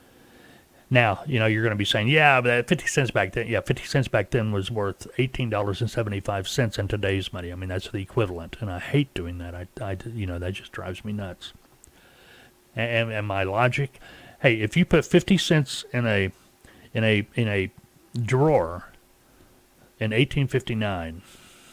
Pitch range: 95-130 Hz